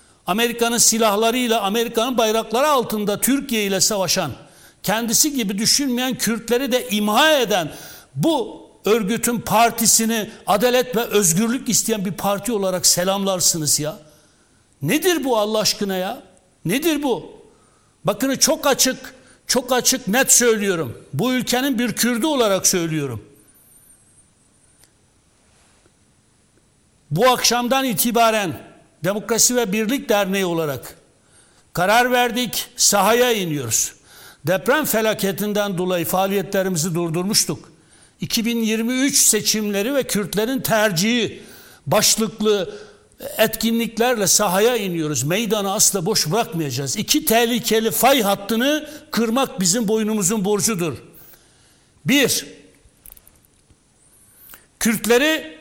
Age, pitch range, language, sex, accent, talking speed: 60-79, 190-245 Hz, Turkish, male, native, 95 wpm